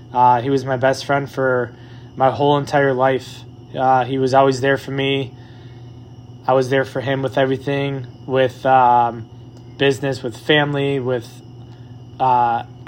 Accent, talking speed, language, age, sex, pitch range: American, 150 wpm, English, 20-39, male, 125-140 Hz